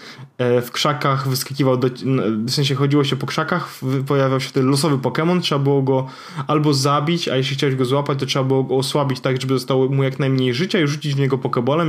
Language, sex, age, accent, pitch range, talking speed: Polish, male, 10-29, native, 125-140 Hz, 205 wpm